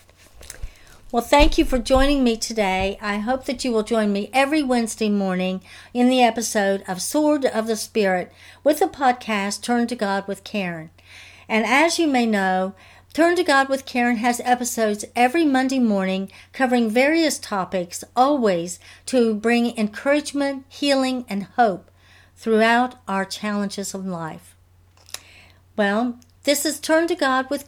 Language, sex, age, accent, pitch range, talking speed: English, female, 50-69, American, 190-265 Hz, 150 wpm